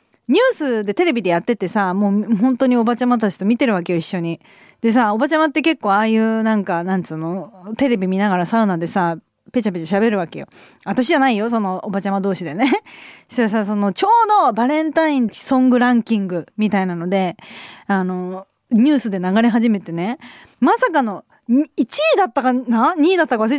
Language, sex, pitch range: Japanese, female, 205-290 Hz